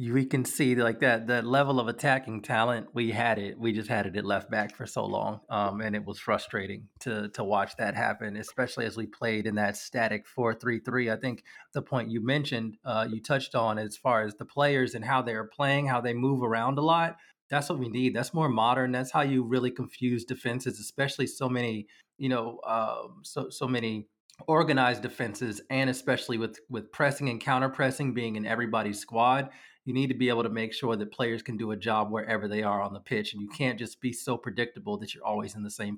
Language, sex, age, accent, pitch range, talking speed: English, male, 30-49, American, 110-130 Hz, 230 wpm